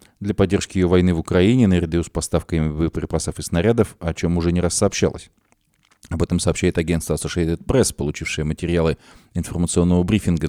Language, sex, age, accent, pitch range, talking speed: Russian, male, 20-39, native, 85-110 Hz, 160 wpm